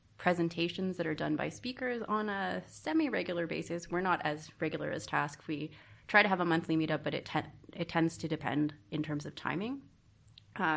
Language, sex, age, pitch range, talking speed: English, female, 20-39, 150-180 Hz, 190 wpm